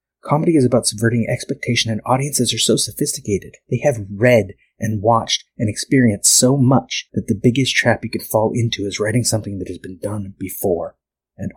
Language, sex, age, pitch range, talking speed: English, male, 30-49, 105-125 Hz, 185 wpm